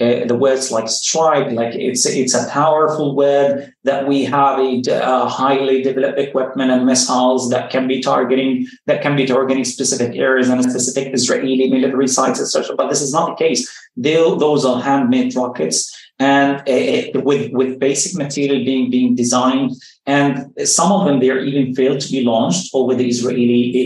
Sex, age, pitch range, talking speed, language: male, 30-49, 125-145 Hz, 180 wpm, English